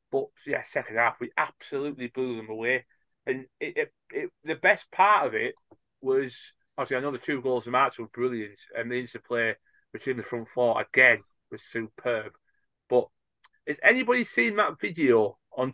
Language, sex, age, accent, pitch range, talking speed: English, male, 30-49, British, 120-180 Hz, 175 wpm